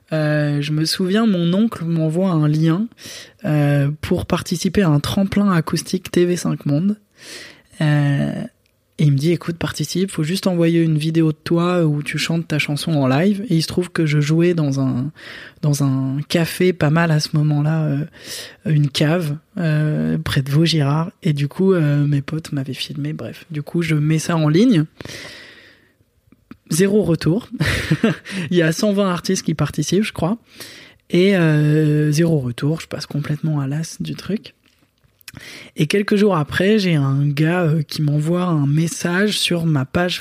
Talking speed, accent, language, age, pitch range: 175 wpm, French, French, 20-39, 150-185 Hz